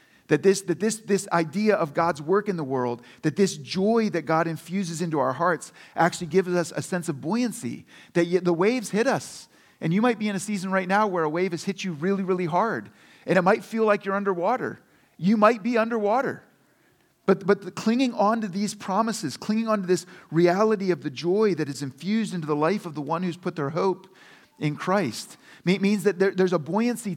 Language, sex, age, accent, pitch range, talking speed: English, male, 40-59, American, 150-200 Hz, 220 wpm